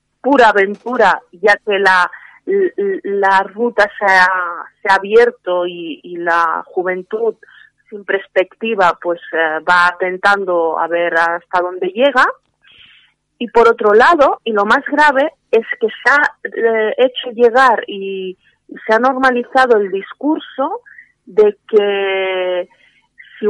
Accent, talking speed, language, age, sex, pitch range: Spanish, 135 wpm, Spanish, 30-49, female, 195-255 Hz